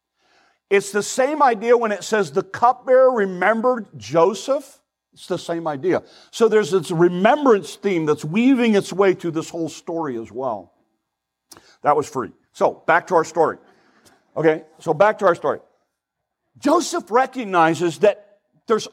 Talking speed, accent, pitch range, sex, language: 150 wpm, American, 155-225 Hz, male, English